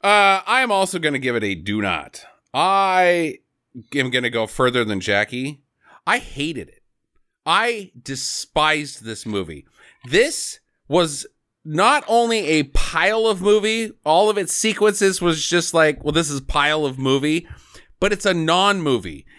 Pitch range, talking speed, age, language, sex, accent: 145-225 Hz, 155 wpm, 30-49, English, male, American